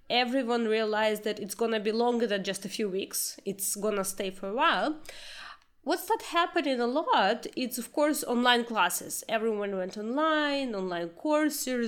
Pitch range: 220-290 Hz